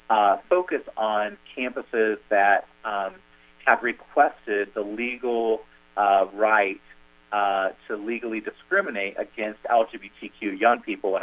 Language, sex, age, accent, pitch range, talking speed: English, male, 30-49, American, 95-115 Hz, 110 wpm